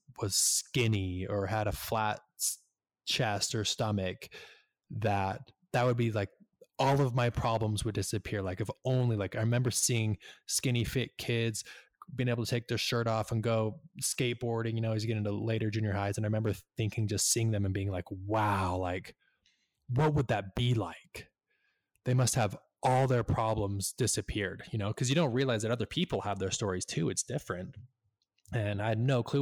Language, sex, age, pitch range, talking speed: English, male, 20-39, 100-120 Hz, 190 wpm